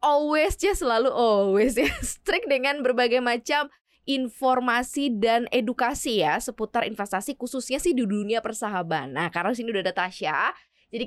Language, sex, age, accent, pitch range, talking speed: Indonesian, female, 20-39, native, 215-275 Hz, 145 wpm